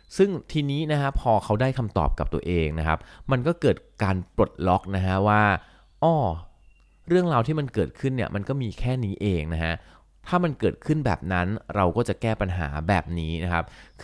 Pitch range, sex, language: 85-110 Hz, male, Thai